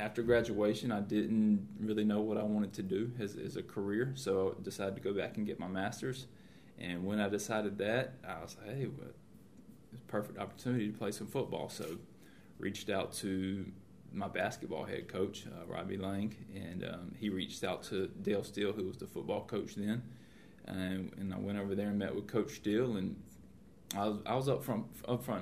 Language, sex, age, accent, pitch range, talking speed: English, male, 20-39, American, 100-110 Hz, 210 wpm